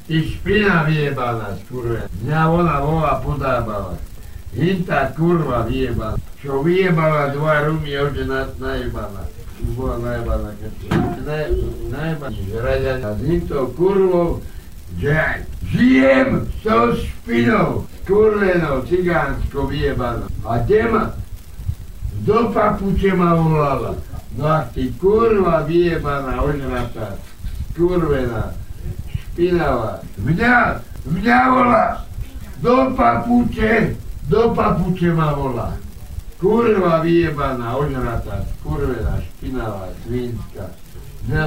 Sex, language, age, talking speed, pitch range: male, Slovak, 60-79, 95 wpm, 110-175 Hz